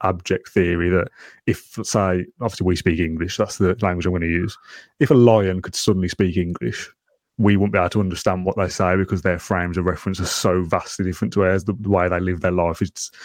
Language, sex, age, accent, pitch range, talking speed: English, male, 30-49, British, 95-120 Hz, 225 wpm